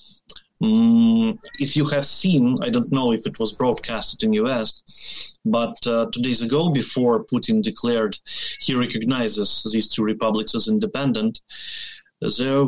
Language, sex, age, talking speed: English, male, 30-49, 140 wpm